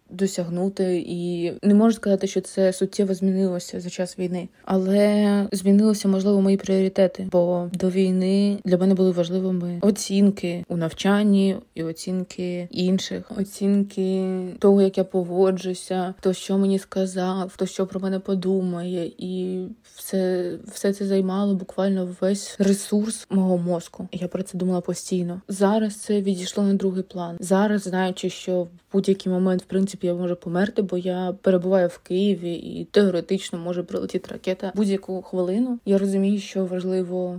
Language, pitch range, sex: Ukrainian, 185-195 Hz, female